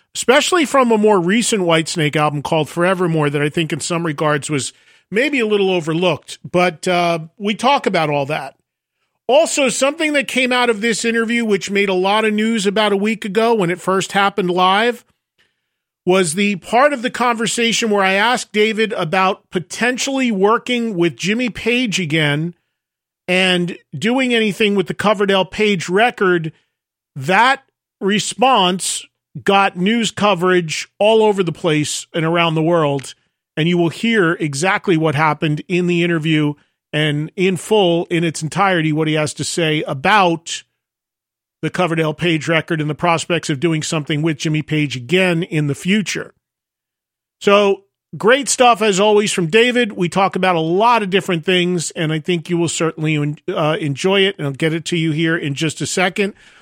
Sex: male